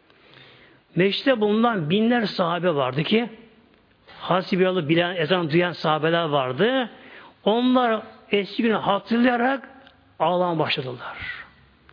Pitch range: 160-230 Hz